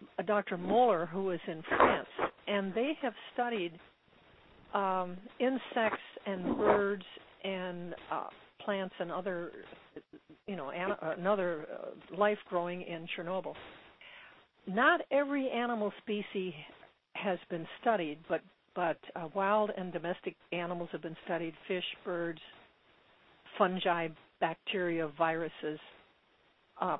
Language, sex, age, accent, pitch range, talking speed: English, female, 60-79, American, 170-215 Hz, 120 wpm